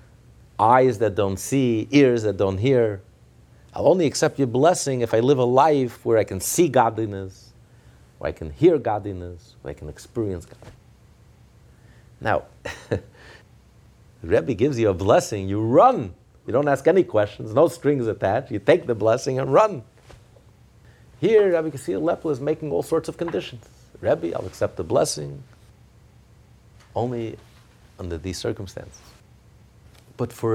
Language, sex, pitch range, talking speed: English, male, 110-135 Hz, 150 wpm